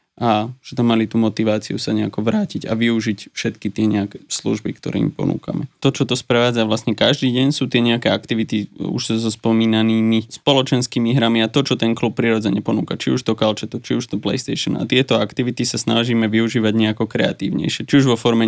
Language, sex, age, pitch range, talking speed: Slovak, male, 20-39, 110-125 Hz, 205 wpm